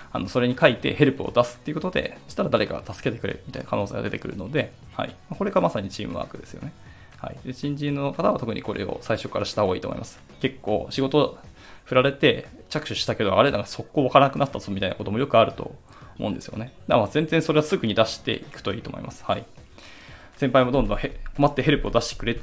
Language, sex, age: Japanese, male, 20-39